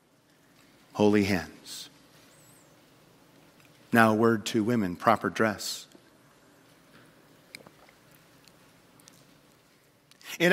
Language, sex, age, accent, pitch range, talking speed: English, male, 50-69, American, 120-175 Hz, 55 wpm